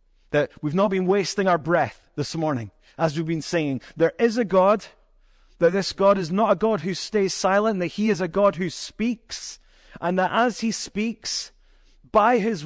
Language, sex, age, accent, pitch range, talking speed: English, male, 30-49, British, 165-210 Hz, 195 wpm